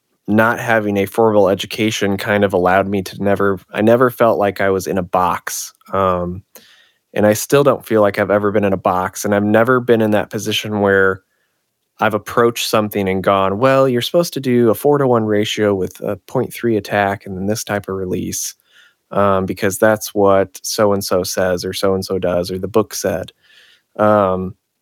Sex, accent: male, American